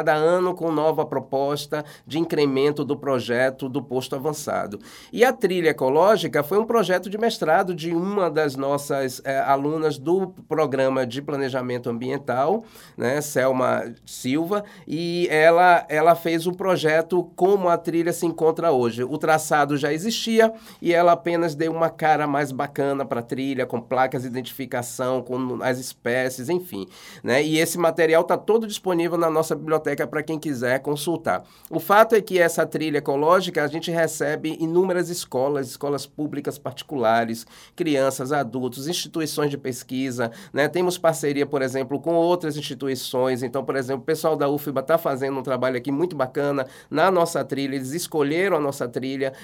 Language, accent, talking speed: Portuguese, Brazilian, 160 wpm